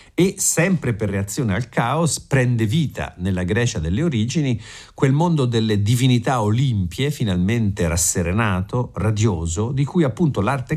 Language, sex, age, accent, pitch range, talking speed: Italian, male, 50-69, native, 95-130 Hz, 135 wpm